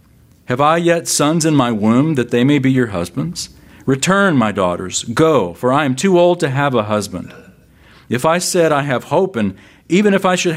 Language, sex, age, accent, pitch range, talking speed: English, male, 50-69, American, 105-150 Hz, 210 wpm